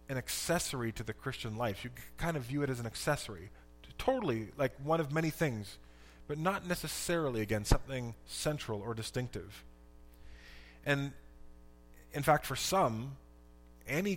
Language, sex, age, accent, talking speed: English, male, 20-39, American, 145 wpm